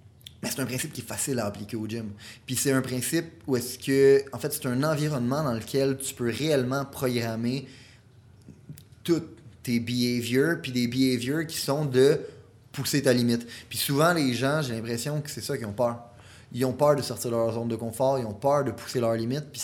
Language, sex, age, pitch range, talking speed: French, male, 20-39, 115-140 Hz, 215 wpm